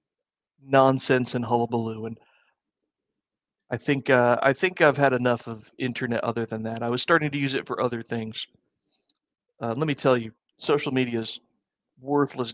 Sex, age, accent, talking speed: male, 40-59, American, 165 wpm